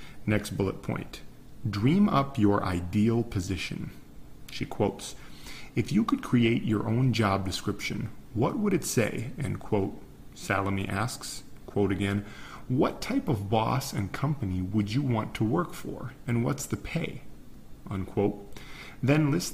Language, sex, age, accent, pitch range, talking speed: English, male, 40-59, American, 100-115 Hz, 145 wpm